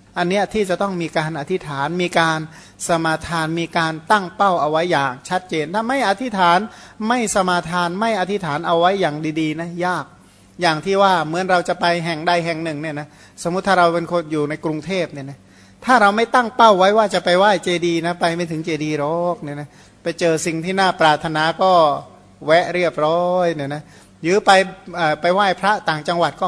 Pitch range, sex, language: 160-200 Hz, male, Thai